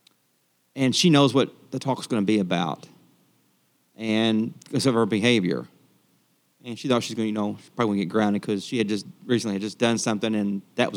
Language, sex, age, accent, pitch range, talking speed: English, male, 40-59, American, 110-135 Hz, 225 wpm